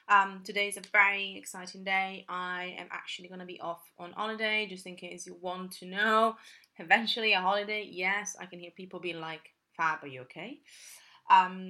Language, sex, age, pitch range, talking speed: English, female, 20-39, 165-210 Hz, 195 wpm